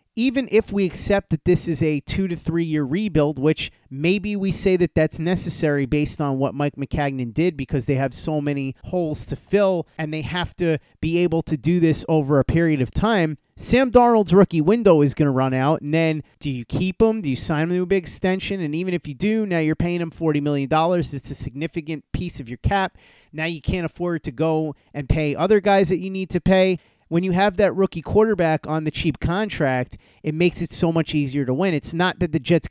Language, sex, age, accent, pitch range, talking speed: English, male, 30-49, American, 145-180 Hz, 235 wpm